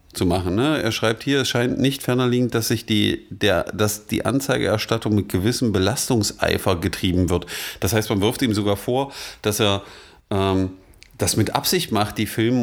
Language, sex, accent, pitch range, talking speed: German, male, German, 105-125 Hz, 165 wpm